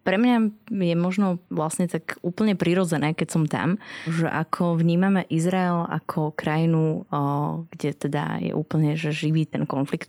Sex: female